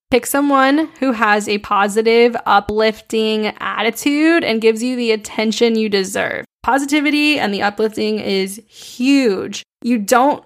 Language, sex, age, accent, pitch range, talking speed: English, female, 10-29, American, 210-245 Hz, 130 wpm